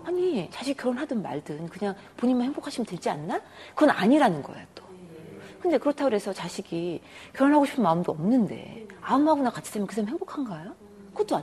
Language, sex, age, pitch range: Korean, female, 40-59, 180-250 Hz